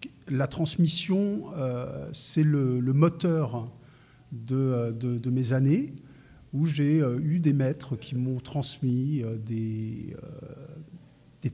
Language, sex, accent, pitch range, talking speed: French, male, French, 125-155 Hz, 115 wpm